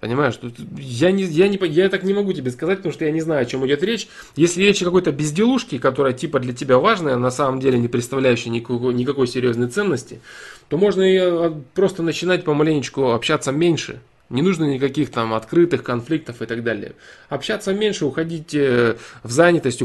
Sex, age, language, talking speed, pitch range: male, 20-39, Russian, 185 wpm, 120-160 Hz